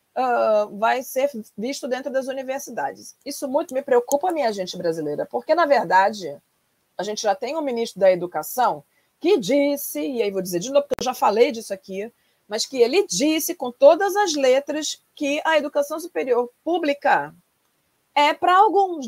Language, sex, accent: Portuguese, female, Brazilian